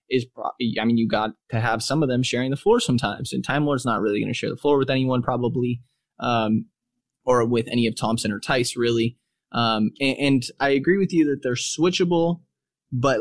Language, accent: English, American